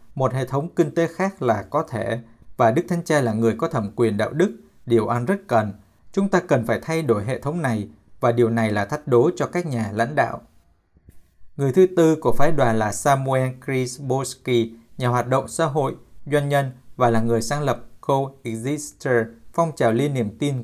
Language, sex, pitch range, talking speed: Vietnamese, male, 115-150 Hz, 210 wpm